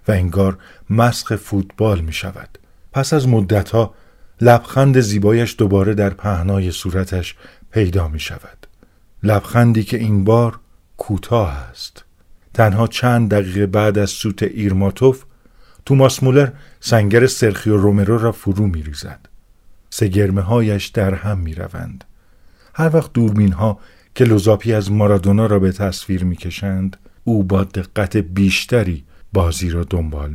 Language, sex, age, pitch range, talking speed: Persian, male, 50-69, 95-110 Hz, 125 wpm